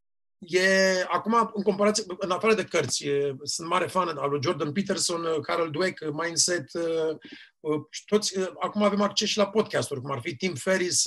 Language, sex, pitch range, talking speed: Romanian, male, 165-195 Hz, 190 wpm